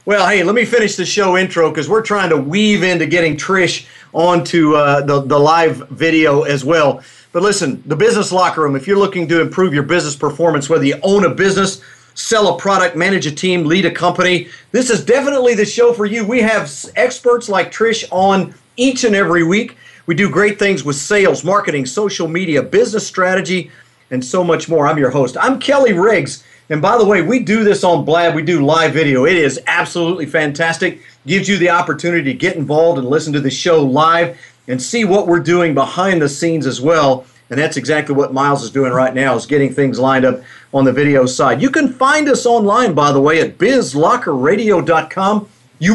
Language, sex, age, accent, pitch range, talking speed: English, male, 40-59, American, 150-200 Hz, 210 wpm